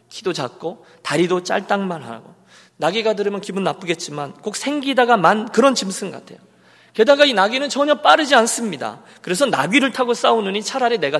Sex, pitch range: male, 150-225 Hz